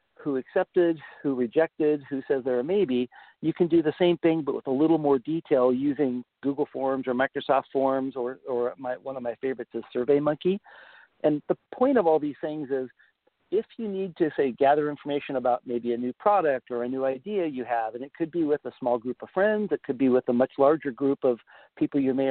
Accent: American